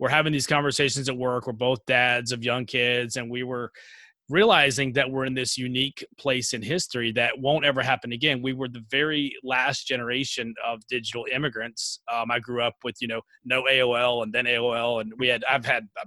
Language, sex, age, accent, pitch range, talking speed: English, male, 30-49, American, 125-145 Hz, 210 wpm